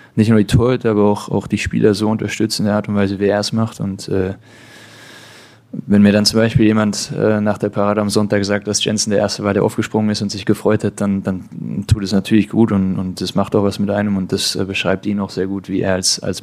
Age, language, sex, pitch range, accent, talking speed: 20-39, German, male, 95-105 Hz, German, 265 wpm